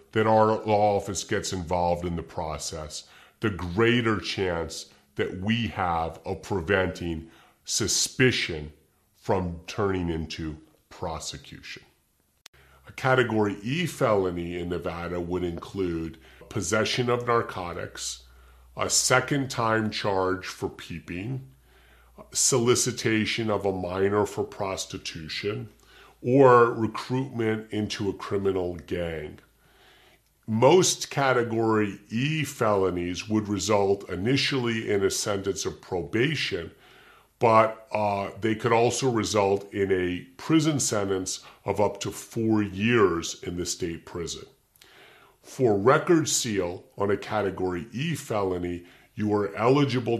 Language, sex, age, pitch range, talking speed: English, female, 40-59, 90-115 Hz, 110 wpm